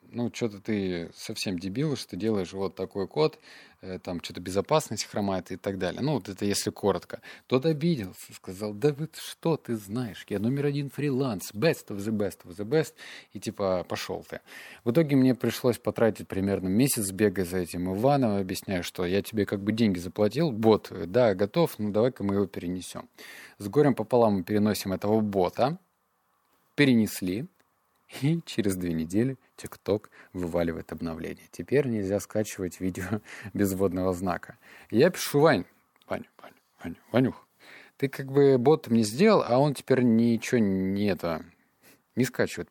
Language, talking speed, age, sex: Russian, 155 wpm, 20-39, male